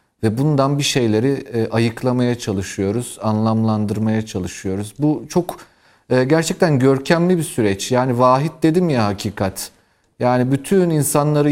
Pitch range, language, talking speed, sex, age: 110-160 Hz, Turkish, 115 wpm, male, 40-59